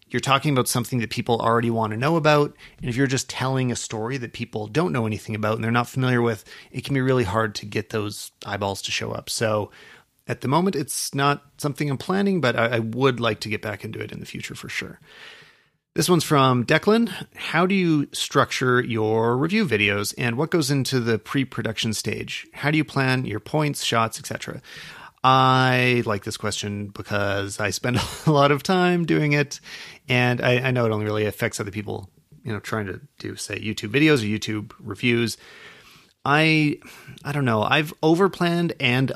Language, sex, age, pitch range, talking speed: English, male, 30-49, 110-140 Hz, 200 wpm